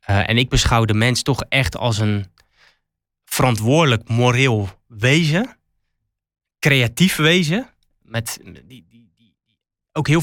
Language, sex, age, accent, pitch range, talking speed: Dutch, male, 20-39, Dutch, 110-140 Hz, 110 wpm